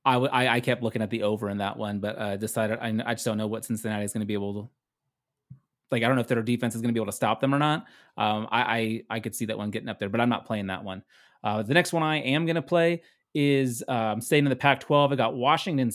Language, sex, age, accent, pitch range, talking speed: English, male, 30-49, American, 115-145 Hz, 295 wpm